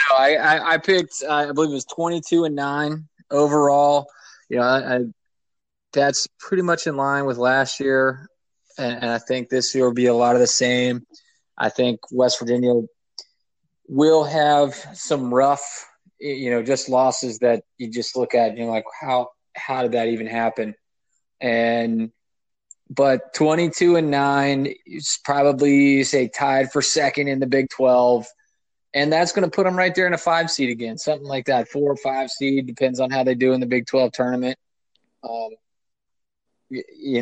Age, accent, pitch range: 20-39, American, 120-145 Hz